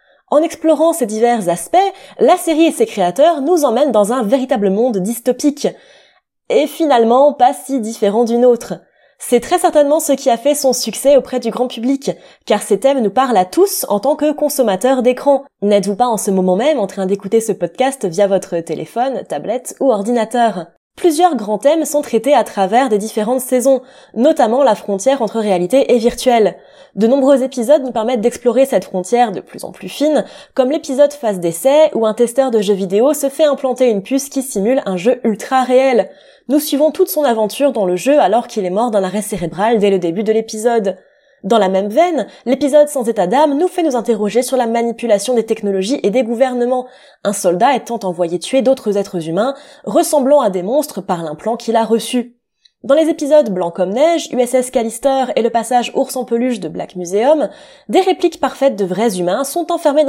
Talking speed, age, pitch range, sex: 200 wpm, 20-39, 210-285 Hz, female